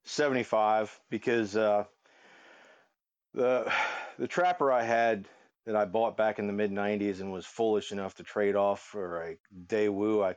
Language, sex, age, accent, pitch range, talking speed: English, male, 40-59, American, 95-110 Hz, 160 wpm